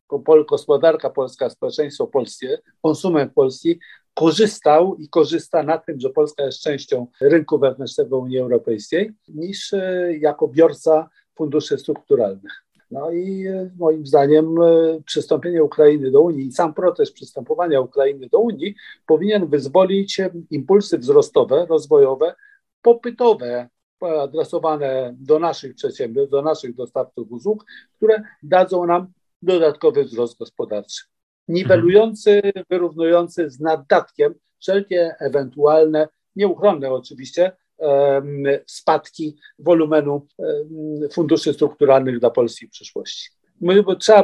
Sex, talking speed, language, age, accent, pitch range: male, 105 wpm, Polish, 50-69, native, 150-220 Hz